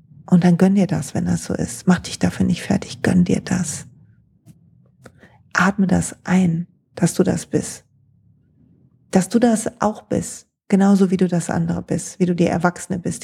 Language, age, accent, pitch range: German, 40-59, German, 175-205 Hz